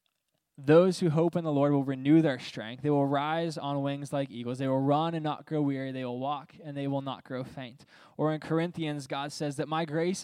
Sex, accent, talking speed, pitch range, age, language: male, American, 240 wpm, 130-155 Hz, 10-29, English